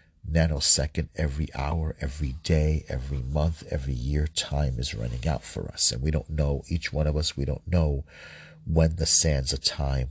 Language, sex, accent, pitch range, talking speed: English, male, American, 75-90 Hz, 185 wpm